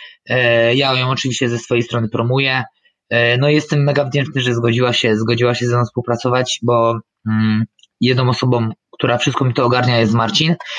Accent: native